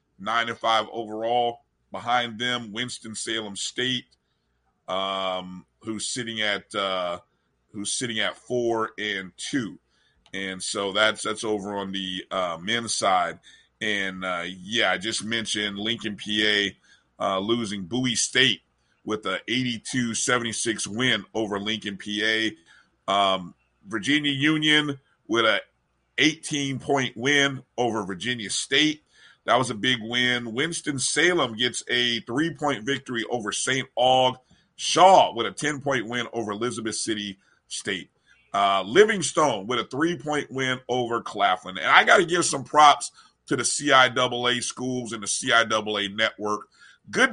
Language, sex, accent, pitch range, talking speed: English, male, American, 110-130 Hz, 135 wpm